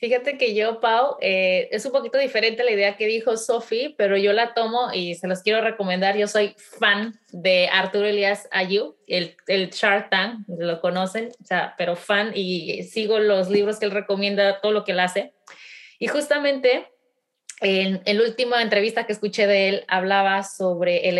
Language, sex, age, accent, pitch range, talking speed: Spanish, female, 20-39, Mexican, 195-245 Hz, 185 wpm